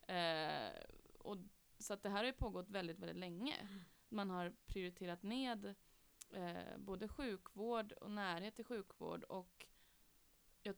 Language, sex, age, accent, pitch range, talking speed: Swedish, female, 20-39, native, 180-210 Hz, 140 wpm